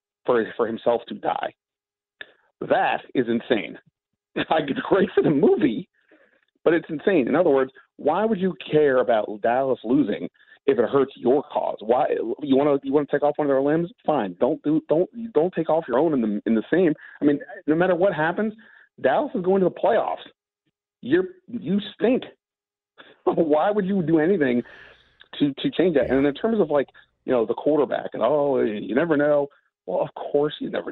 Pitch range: 125-190 Hz